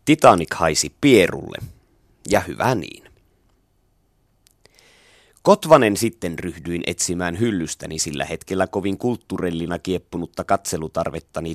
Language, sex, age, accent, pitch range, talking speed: Finnish, male, 30-49, native, 80-100 Hz, 90 wpm